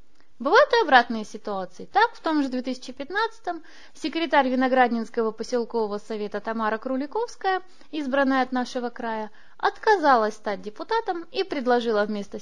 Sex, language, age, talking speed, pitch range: female, Russian, 20-39, 125 wpm, 225-275 Hz